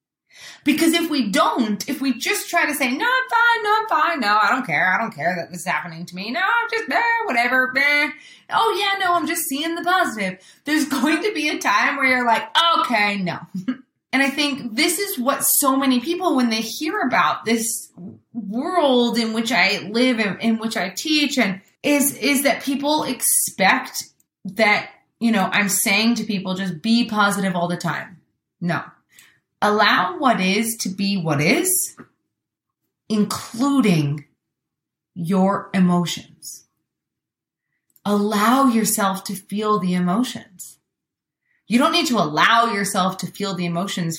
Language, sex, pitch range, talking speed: English, female, 200-285 Hz, 170 wpm